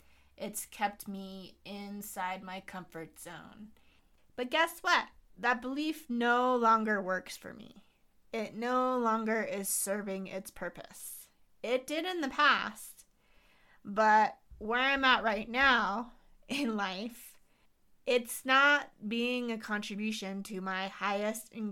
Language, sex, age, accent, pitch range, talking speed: English, female, 30-49, American, 195-250 Hz, 125 wpm